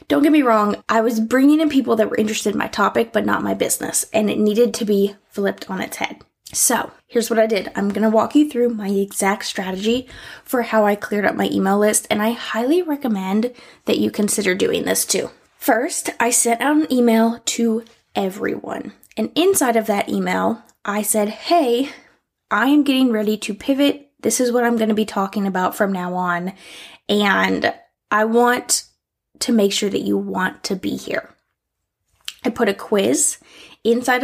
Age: 10-29